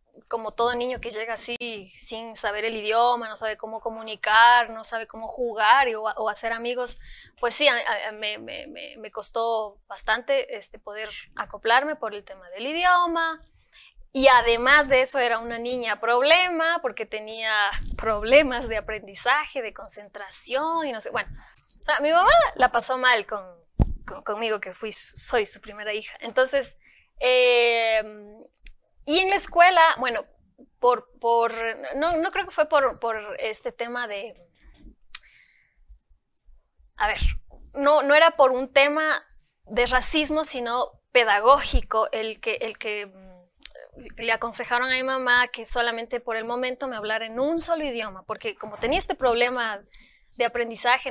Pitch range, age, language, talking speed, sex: 220-275 Hz, 20-39, Spanish, 155 wpm, female